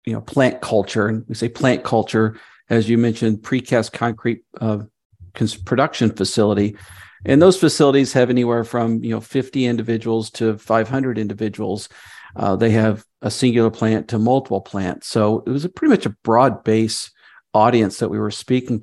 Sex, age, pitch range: male, 50-69, 110-140 Hz